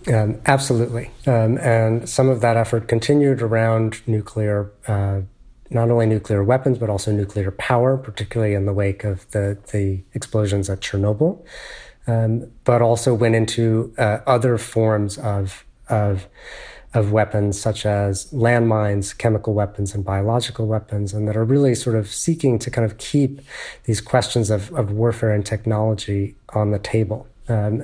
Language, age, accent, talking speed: English, 30-49, American, 155 wpm